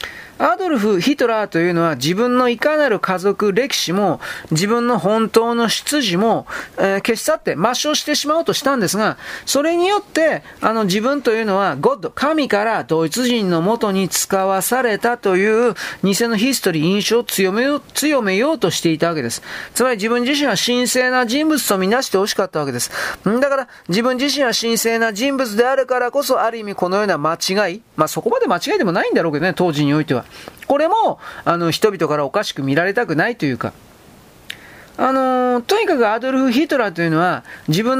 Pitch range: 190-260 Hz